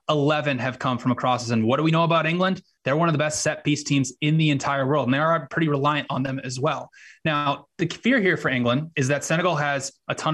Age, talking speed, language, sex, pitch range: 20-39, 260 wpm, English, male, 130-155 Hz